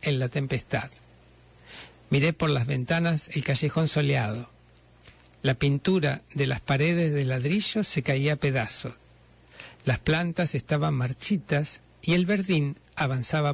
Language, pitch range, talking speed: Spanish, 130-165 Hz, 130 wpm